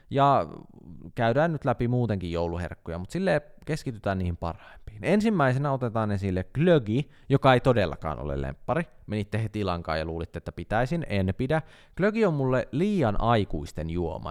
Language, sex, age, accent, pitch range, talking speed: Finnish, male, 20-39, native, 95-125 Hz, 145 wpm